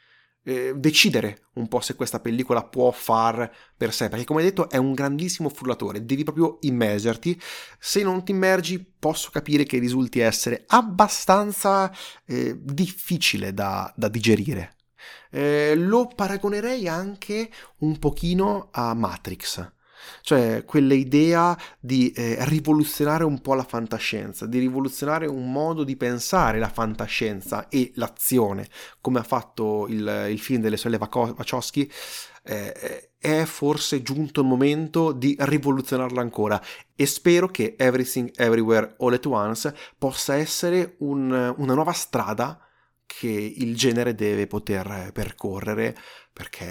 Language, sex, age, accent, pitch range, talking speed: Italian, male, 30-49, native, 115-155 Hz, 130 wpm